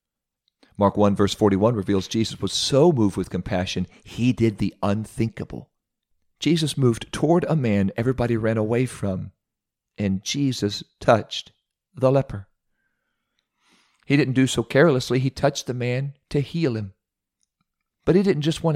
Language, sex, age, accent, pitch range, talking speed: English, male, 40-59, American, 105-140 Hz, 145 wpm